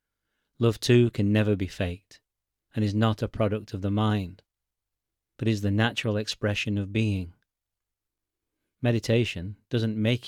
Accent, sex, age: British, male, 30-49